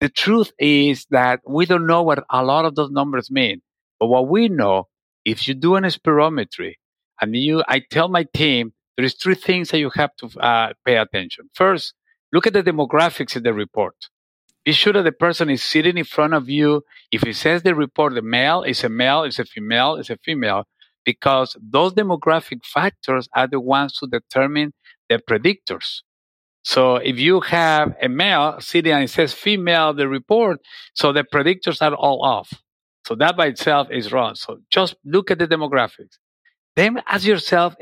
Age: 50-69